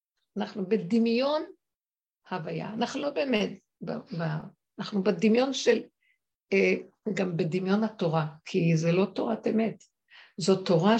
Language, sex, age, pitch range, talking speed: Hebrew, female, 60-79, 175-225 Hz, 115 wpm